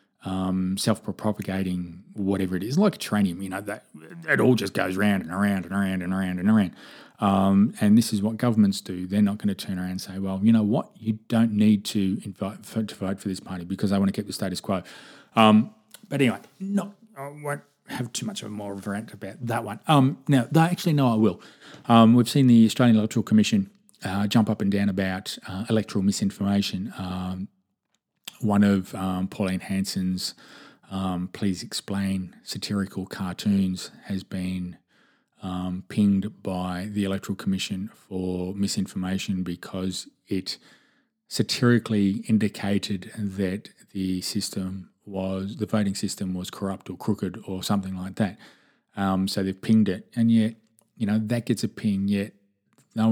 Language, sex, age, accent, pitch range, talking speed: English, male, 20-39, Australian, 95-110 Hz, 175 wpm